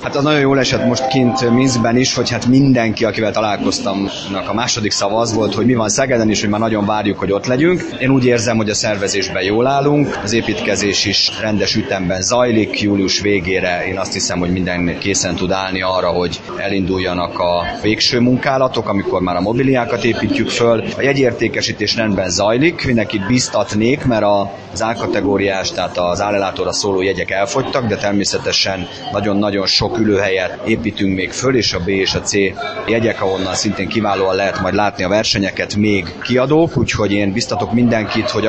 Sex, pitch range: male, 95-120 Hz